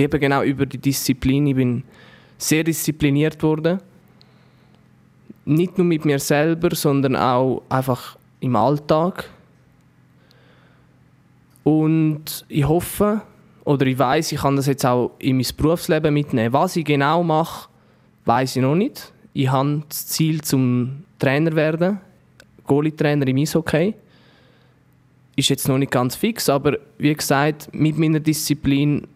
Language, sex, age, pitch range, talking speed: English, male, 20-39, 135-155 Hz, 140 wpm